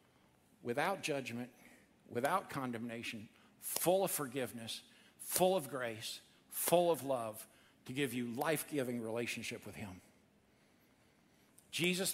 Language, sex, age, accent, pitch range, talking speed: English, male, 50-69, American, 150-230 Hz, 105 wpm